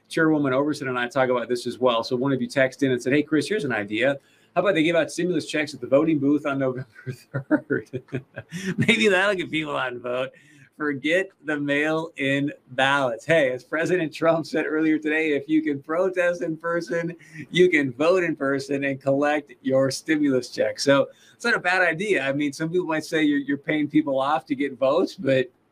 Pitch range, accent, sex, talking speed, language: 130-155 Hz, American, male, 210 wpm, English